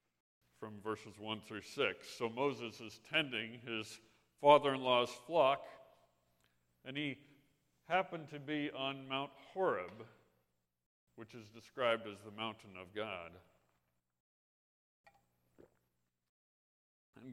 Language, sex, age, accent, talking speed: English, male, 50-69, American, 100 wpm